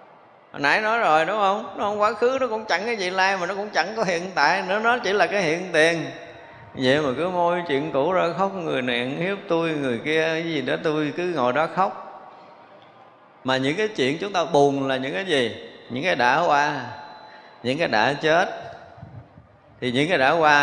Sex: male